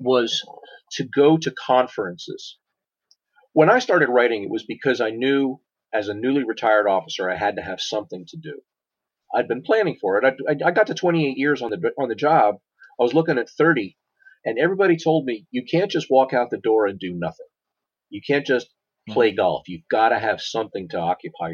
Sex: male